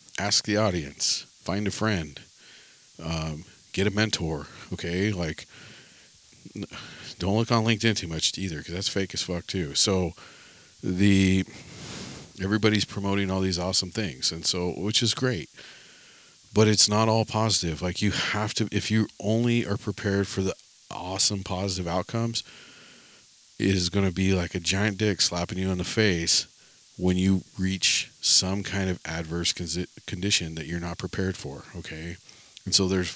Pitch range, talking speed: 85-100 Hz, 155 wpm